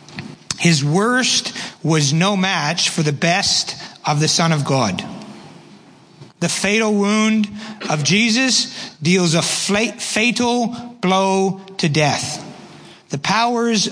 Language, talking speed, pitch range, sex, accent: English, 110 wpm, 160-200 Hz, male, American